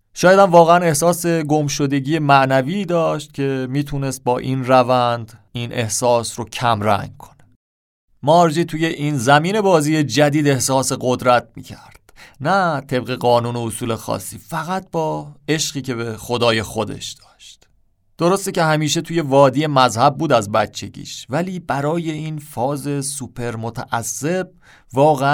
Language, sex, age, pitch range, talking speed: Persian, male, 30-49, 125-155 Hz, 130 wpm